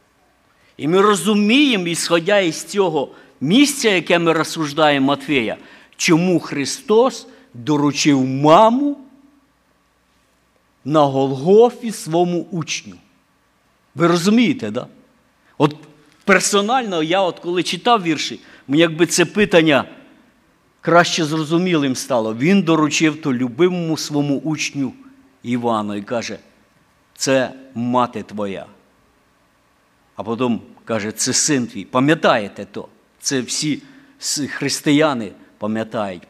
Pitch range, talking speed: 140-185 Hz, 100 wpm